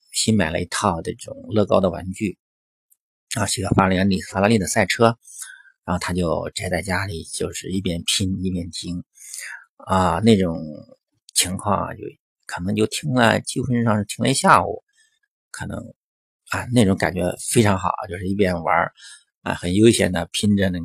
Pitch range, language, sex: 90-120 Hz, Chinese, male